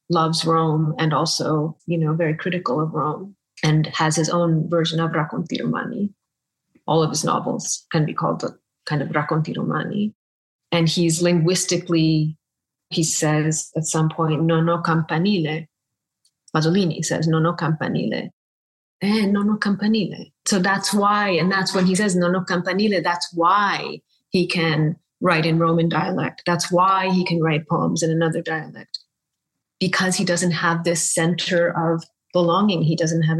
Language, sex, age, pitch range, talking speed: Italian, female, 30-49, 160-185 Hz, 160 wpm